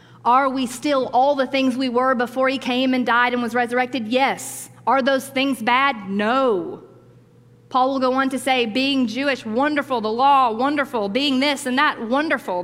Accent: American